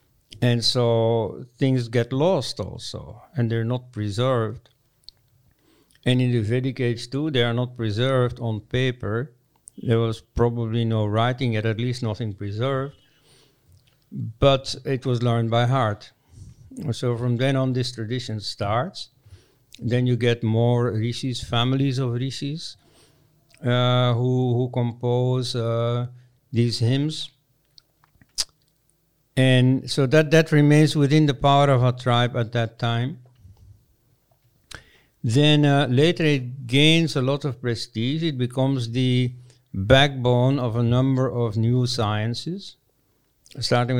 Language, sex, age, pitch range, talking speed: Hindi, male, 60-79, 115-130 Hz, 130 wpm